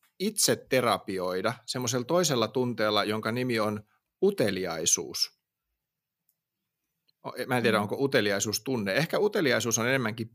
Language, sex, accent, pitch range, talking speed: Finnish, male, native, 110-150 Hz, 110 wpm